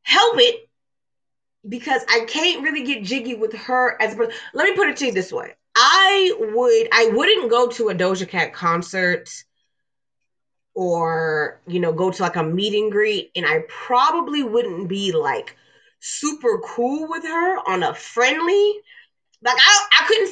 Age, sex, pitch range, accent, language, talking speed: 20-39, female, 190-300 Hz, American, English, 170 wpm